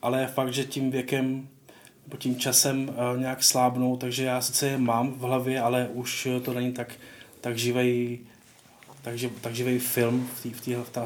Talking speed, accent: 175 wpm, native